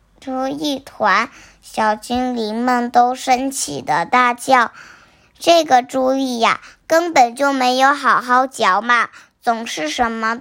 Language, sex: Chinese, male